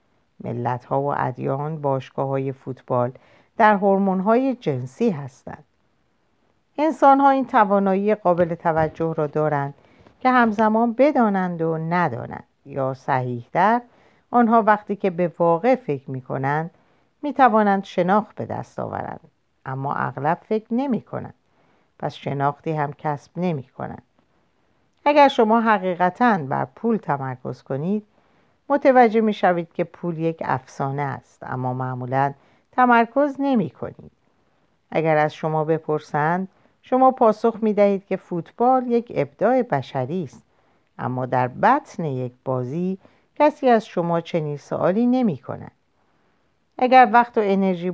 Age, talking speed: 50-69, 125 wpm